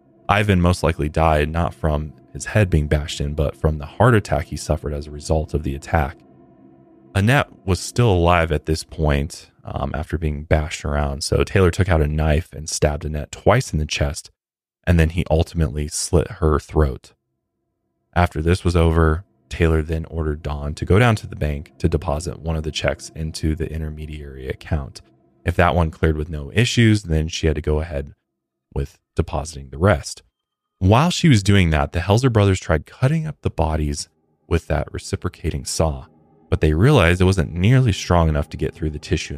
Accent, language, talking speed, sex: American, English, 195 wpm, male